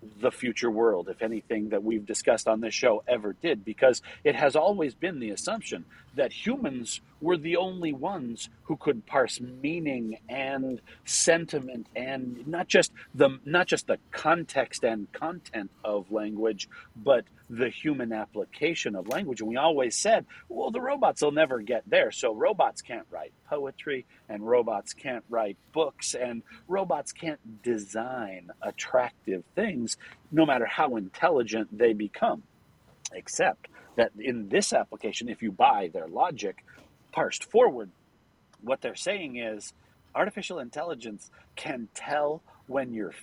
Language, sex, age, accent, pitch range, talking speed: English, male, 40-59, American, 110-160 Hz, 145 wpm